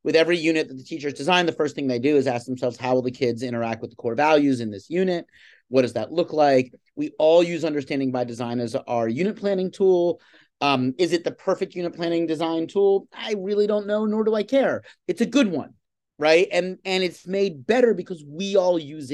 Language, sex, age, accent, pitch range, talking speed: English, male, 30-49, American, 130-180 Hz, 230 wpm